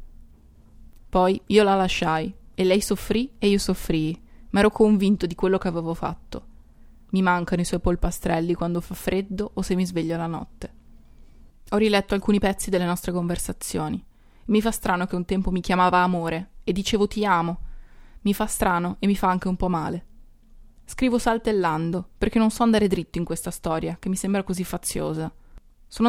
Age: 20-39